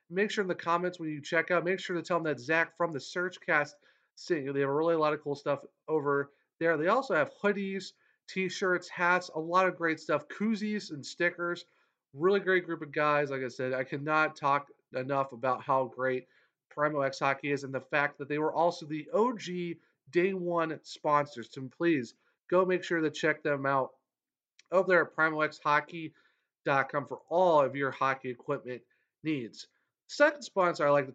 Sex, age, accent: male, 40-59, American